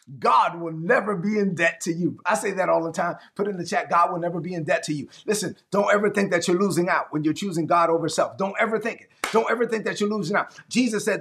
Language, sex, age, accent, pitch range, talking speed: English, male, 30-49, American, 175-210 Hz, 285 wpm